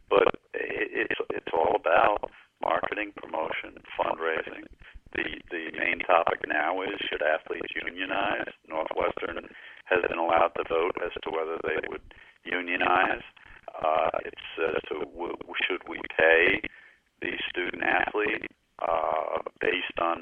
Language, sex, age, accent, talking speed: English, male, 50-69, American, 125 wpm